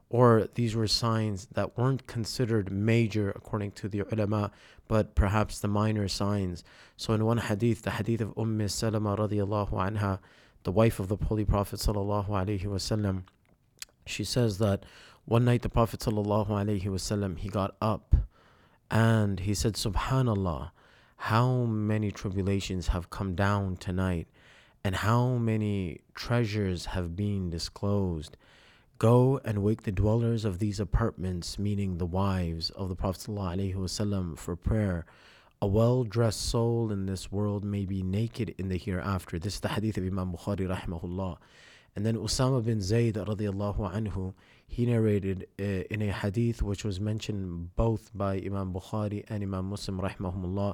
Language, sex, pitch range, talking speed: English, male, 95-110 Hz, 145 wpm